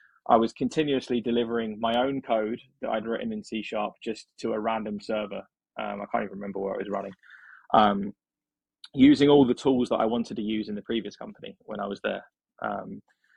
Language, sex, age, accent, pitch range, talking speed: English, male, 20-39, British, 110-135 Hz, 205 wpm